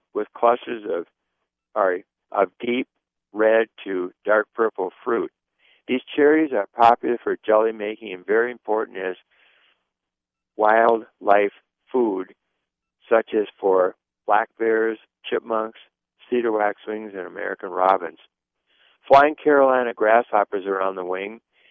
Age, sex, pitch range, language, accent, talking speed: 60-79, male, 100-120 Hz, English, American, 115 wpm